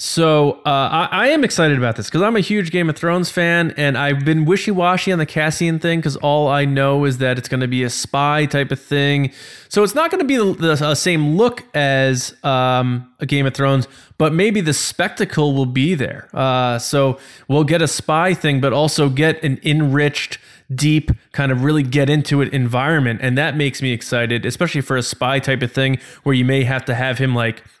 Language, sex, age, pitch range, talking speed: English, male, 20-39, 130-155 Hz, 220 wpm